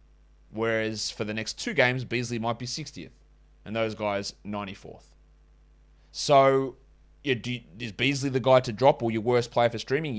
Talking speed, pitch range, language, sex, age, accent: 175 wpm, 105-130 Hz, English, male, 30-49, Australian